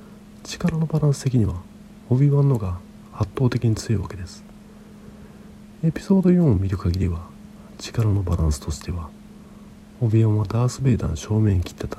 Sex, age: male, 40-59